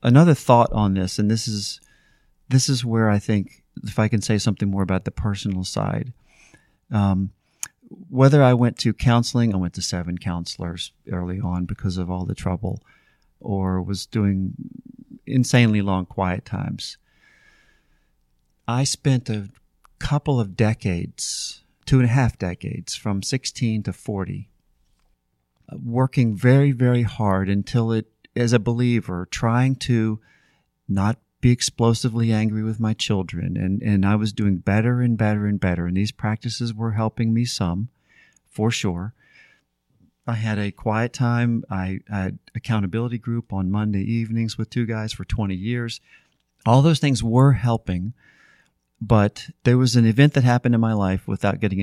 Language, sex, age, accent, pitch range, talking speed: English, male, 40-59, American, 95-120 Hz, 155 wpm